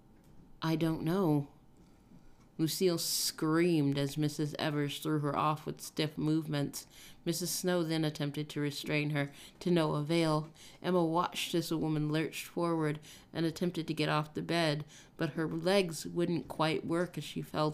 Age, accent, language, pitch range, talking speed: 30-49, American, English, 145-165 Hz, 160 wpm